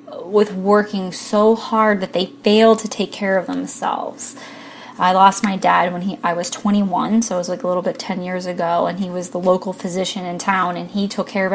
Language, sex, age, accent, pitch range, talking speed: English, female, 20-39, American, 185-230 Hz, 230 wpm